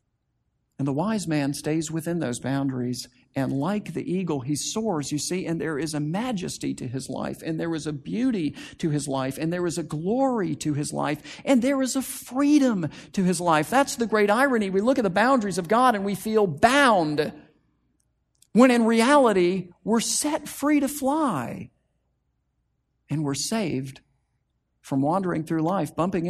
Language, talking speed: English, 180 wpm